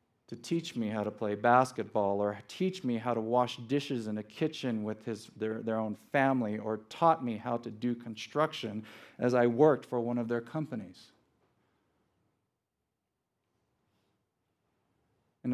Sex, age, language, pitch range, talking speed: male, 50-69, English, 110-160 Hz, 150 wpm